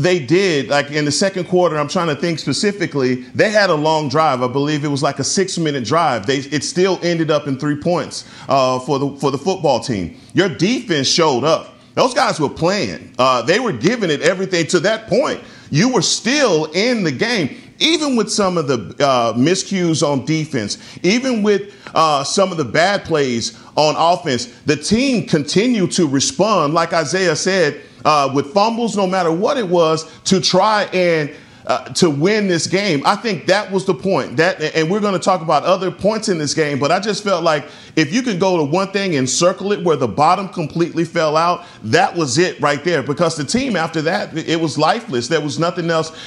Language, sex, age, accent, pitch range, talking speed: English, male, 40-59, American, 145-185 Hz, 210 wpm